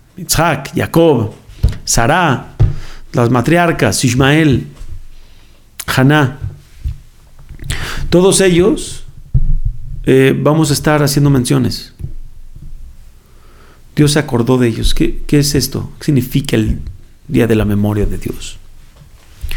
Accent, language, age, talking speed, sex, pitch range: Mexican, Spanish, 40-59, 100 wpm, male, 115-150 Hz